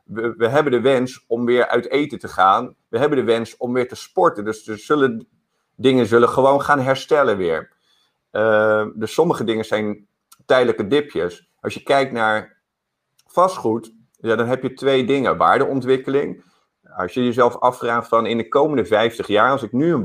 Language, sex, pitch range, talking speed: Dutch, male, 115-135 Hz, 185 wpm